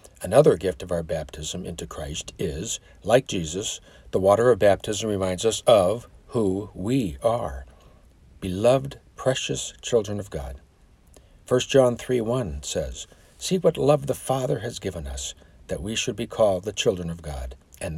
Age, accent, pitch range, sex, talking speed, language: 60-79, American, 75-120 Hz, male, 155 wpm, English